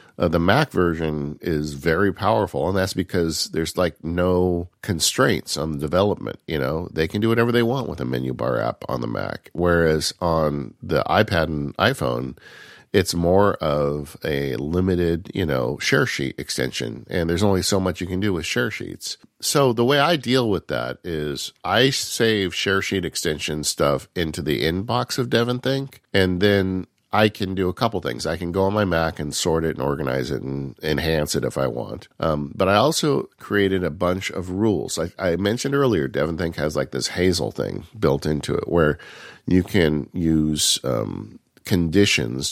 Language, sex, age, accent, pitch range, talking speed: English, male, 50-69, American, 75-100 Hz, 190 wpm